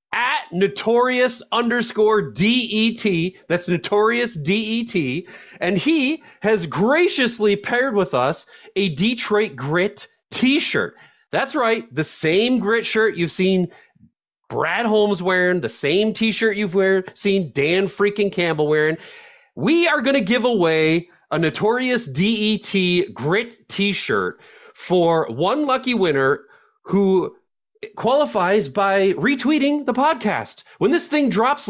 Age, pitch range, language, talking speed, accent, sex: 30-49, 180-245 Hz, English, 135 wpm, American, male